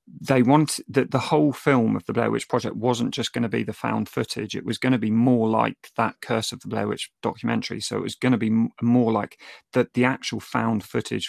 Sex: male